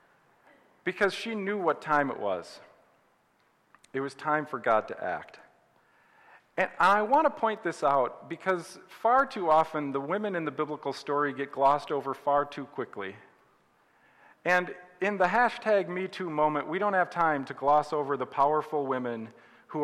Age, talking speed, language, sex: 40-59, 165 wpm, English, male